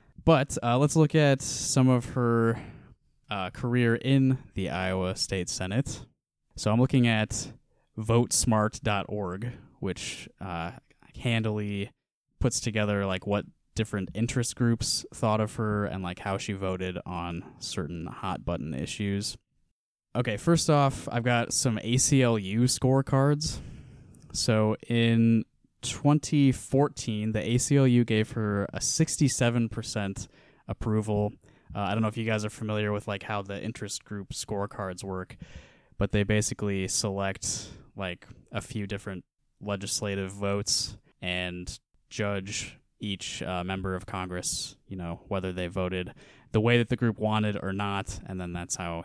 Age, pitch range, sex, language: 20-39, 95-120 Hz, male, English